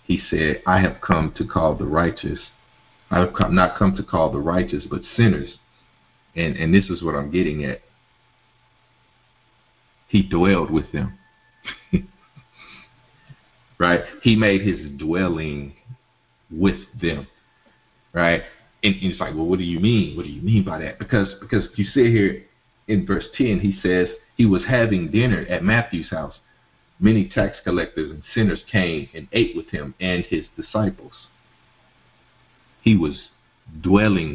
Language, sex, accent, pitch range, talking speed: English, male, American, 90-115 Hz, 155 wpm